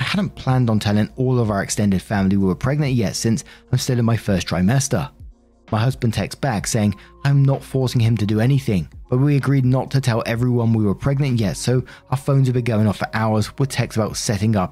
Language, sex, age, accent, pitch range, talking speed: English, male, 30-49, British, 100-135 Hz, 235 wpm